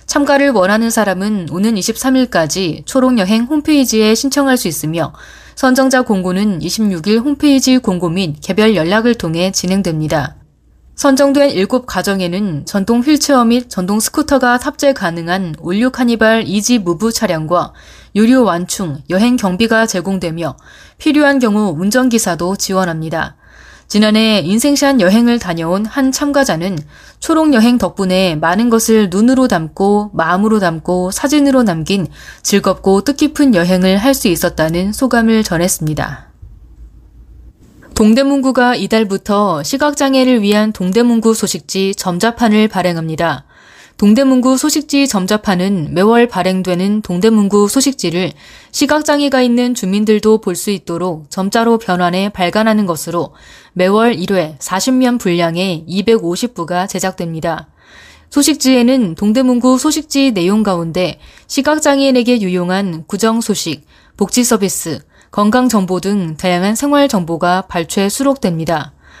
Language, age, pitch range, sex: Korean, 20-39, 180-245 Hz, female